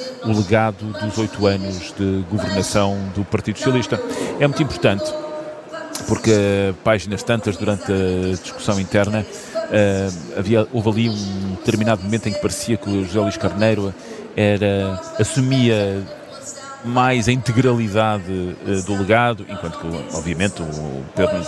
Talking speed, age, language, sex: 125 wpm, 40-59, Portuguese, male